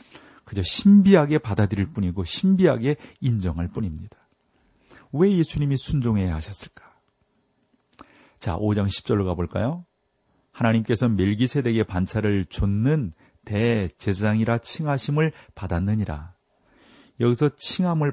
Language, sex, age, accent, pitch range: Korean, male, 40-59, native, 95-125 Hz